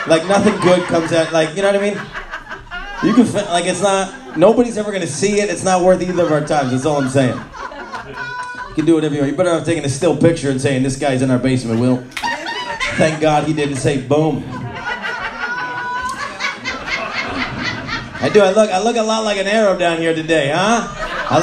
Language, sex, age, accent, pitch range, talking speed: English, male, 30-49, American, 145-190 Hz, 210 wpm